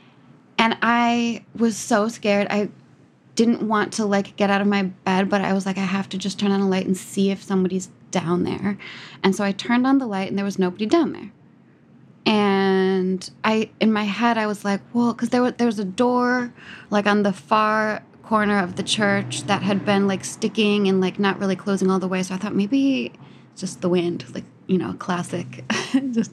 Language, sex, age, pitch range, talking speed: English, female, 20-39, 190-225 Hz, 215 wpm